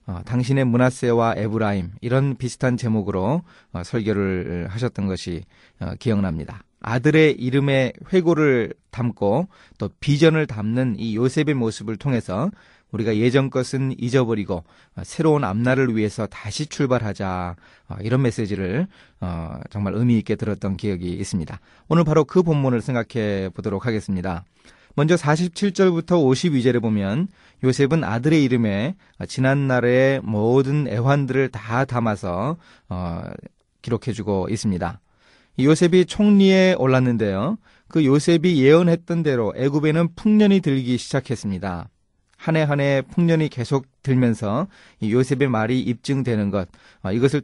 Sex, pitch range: male, 105-145 Hz